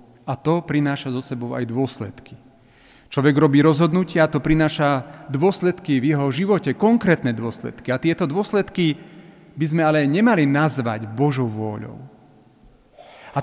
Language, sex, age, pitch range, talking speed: Slovak, male, 40-59, 130-180 Hz, 130 wpm